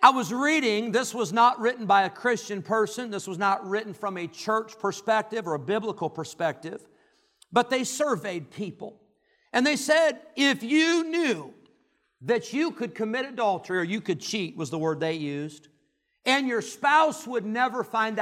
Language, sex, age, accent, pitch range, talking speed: English, male, 50-69, American, 165-220 Hz, 175 wpm